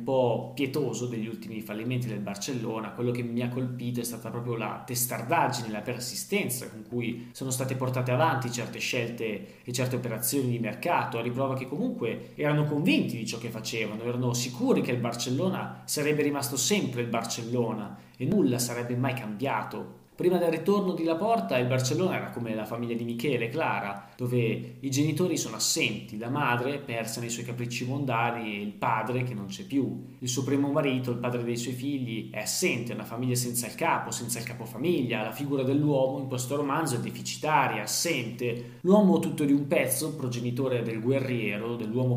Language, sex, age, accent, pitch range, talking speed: Italian, male, 20-39, native, 115-135 Hz, 185 wpm